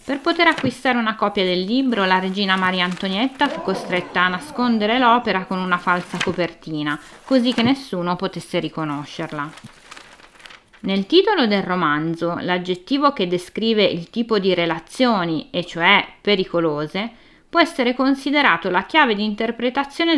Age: 20-39